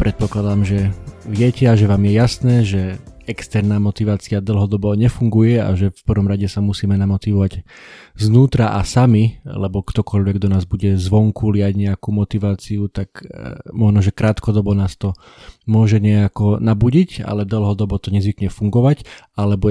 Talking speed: 145 wpm